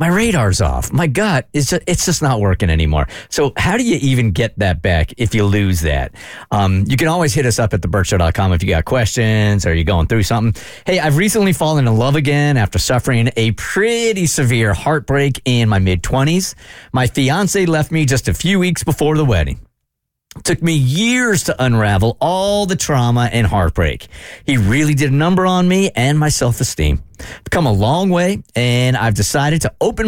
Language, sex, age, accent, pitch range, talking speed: English, male, 40-59, American, 105-160 Hz, 195 wpm